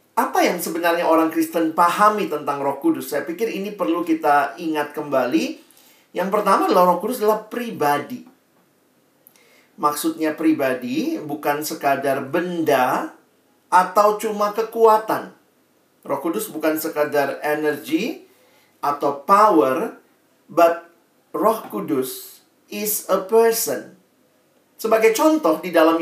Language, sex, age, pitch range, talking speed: Indonesian, male, 40-59, 155-225 Hz, 110 wpm